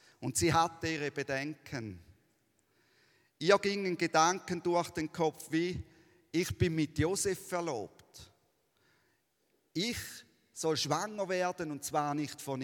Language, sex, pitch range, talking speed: German, male, 145-175 Hz, 120 wpm